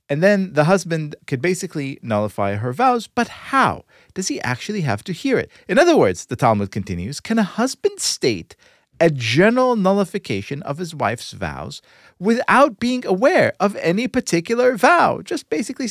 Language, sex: English, male